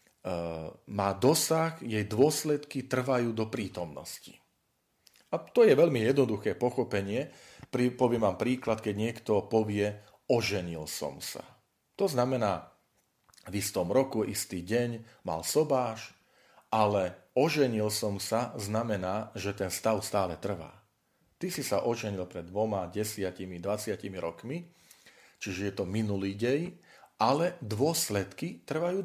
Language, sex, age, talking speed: Slovak, male, 40-59, 120 wpm